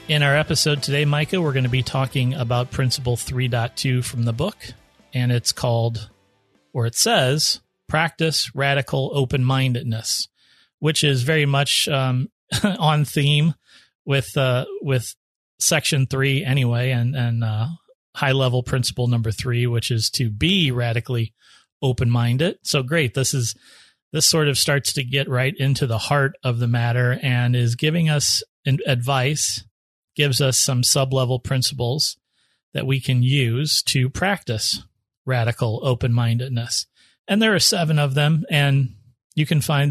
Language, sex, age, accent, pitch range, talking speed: English, male, 30-49, American, 120-150 Hz, 145 wpm